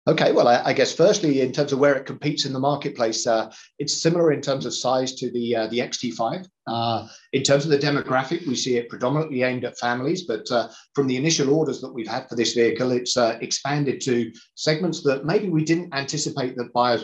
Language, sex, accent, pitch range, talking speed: English, male, British, 120-145 Hz, 220 wpm